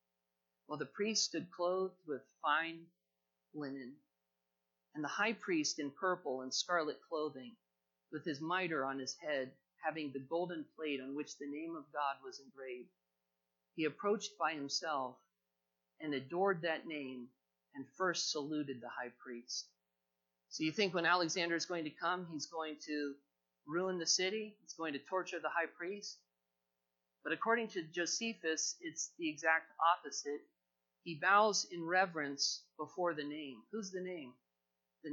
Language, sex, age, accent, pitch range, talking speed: English, male, 50-69, American, 130-180 Hz, 155 wpm